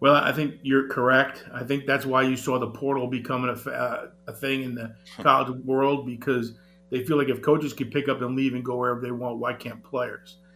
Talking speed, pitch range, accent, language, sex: 235 wpm, 135-180 Hz, American, English, male